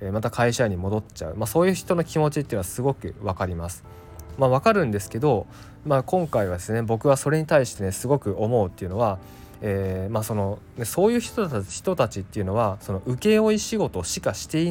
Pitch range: 95-130 Hz